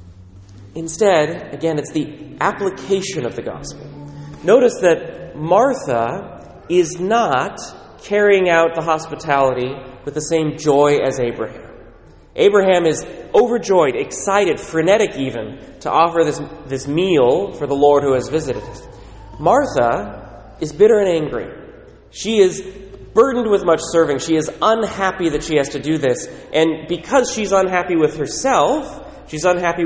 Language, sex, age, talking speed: English, male, 30-49, 140 wpm